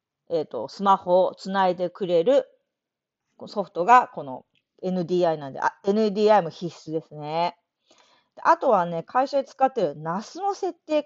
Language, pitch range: Japanese, 175-280 Hz